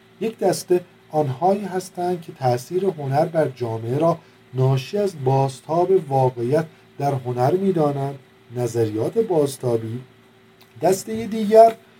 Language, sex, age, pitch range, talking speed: Persian, male, 50-69, 125-185 Hz, 105 wpm